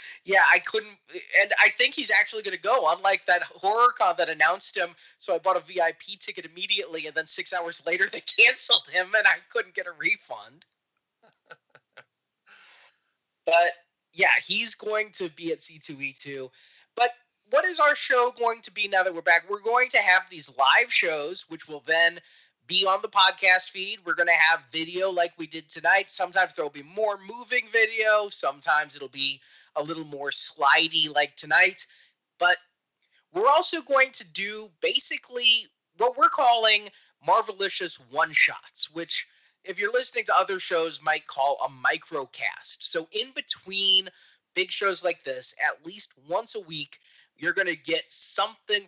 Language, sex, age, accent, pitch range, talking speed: English, male, 20-39, American, 160-230 Hz, 175 wpm